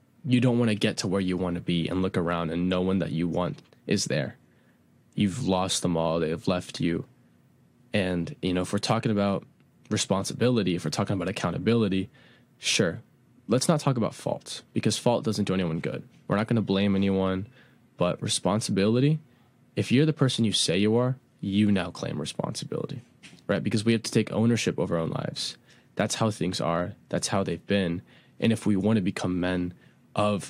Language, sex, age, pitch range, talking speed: English, male, 20-39, 95-115 Hz, 200 wpm